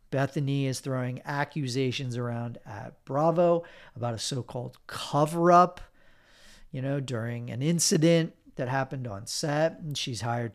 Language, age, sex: English, 40-59, male